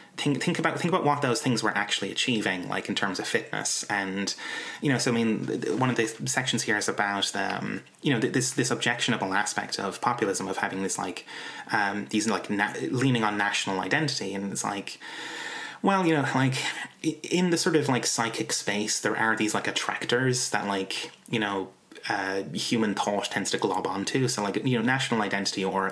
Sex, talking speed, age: male, 200 wpm, 20-39